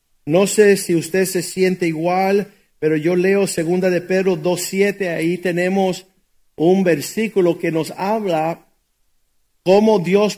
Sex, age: male, 50-69